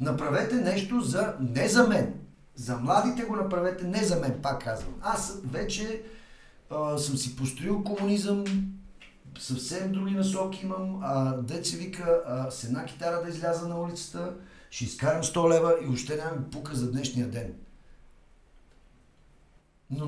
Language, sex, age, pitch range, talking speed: Bulgarian, male, 50-69, 125-185 Hz, 140 wpm